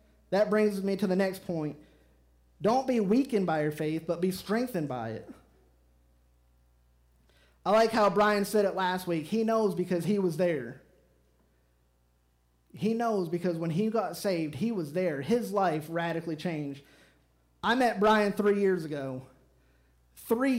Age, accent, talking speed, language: 30-49, American, 155 wpm, English